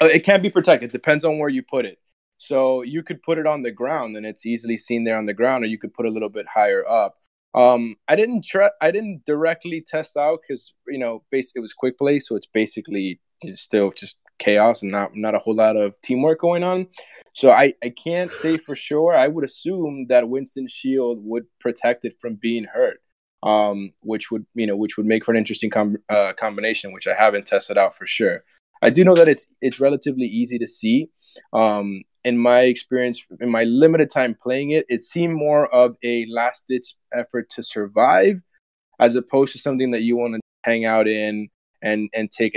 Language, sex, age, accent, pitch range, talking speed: English, male, 20-39, American, 110-145 Hz, 215 wpm